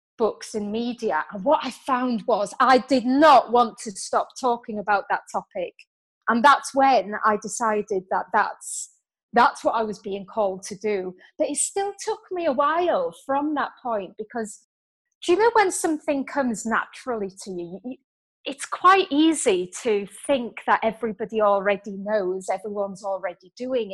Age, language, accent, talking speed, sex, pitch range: 30-49, English, British, 165 wpm, female, 205-285 Hz